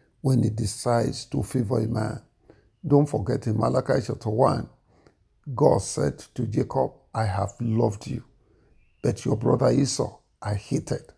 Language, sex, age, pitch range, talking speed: English, male, 50-69, 110-145 Hz, 145 wpm